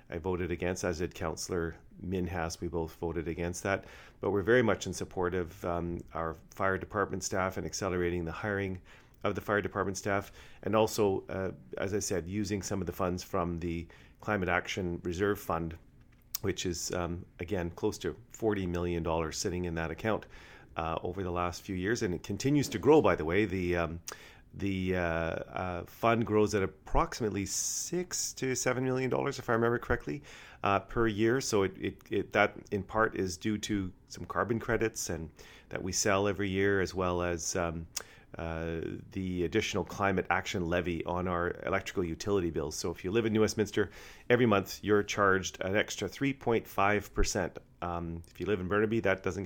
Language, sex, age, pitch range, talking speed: English, male, 40-59, 85-105 Hz, 190 wpm